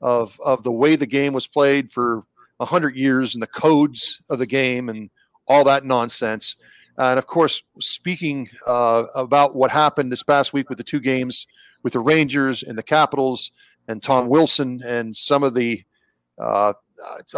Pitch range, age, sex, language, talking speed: 120-145 Hz, 40-59, male, English, 175 wpm